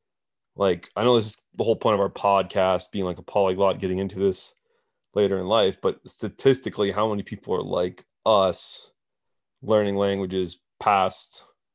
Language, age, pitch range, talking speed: English, 30-49, 95-115 Hz, 165 wpm